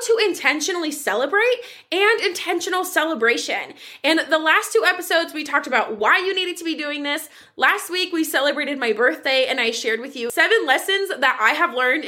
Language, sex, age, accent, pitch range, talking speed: English, female, 20-39, American, 275-410 Hz, 190 wpm